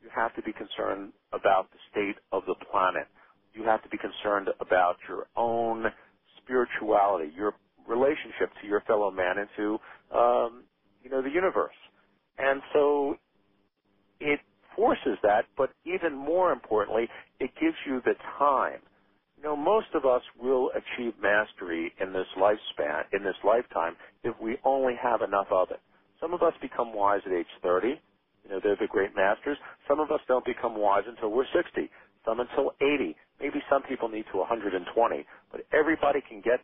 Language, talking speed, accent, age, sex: English, 170 wpm, American, 50-69, male